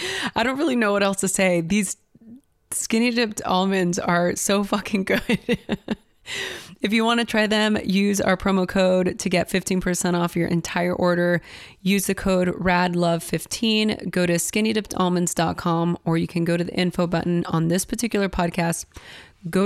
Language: English